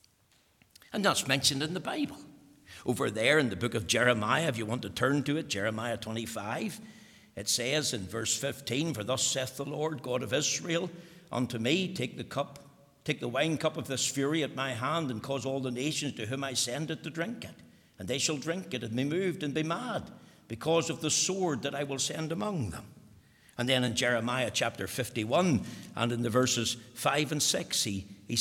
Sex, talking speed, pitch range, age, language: male, 205 wpm, 120-150 Hz, 60-79, English